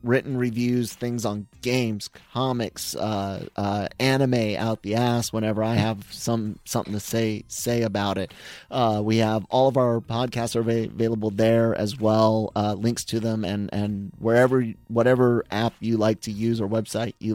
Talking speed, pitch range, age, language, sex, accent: 175 wpm, 105-120 Hz, 30-49, English, male, American